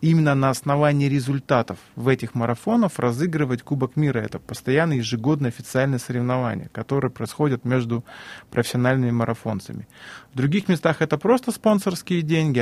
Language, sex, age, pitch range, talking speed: Russian, male, 20-39, 115-135 Hz, 130 wpm